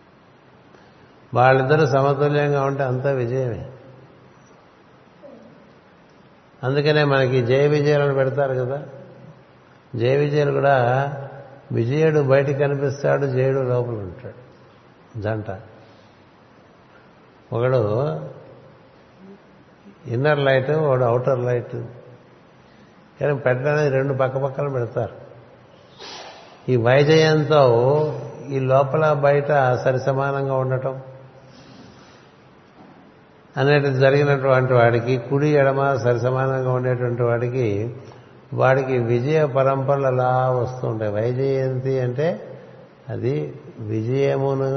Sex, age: male, 60-79